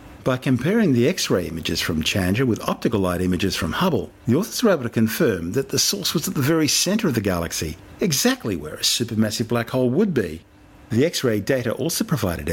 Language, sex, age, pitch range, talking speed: English, male, 50-69, 100-135 Hz, 205 wpm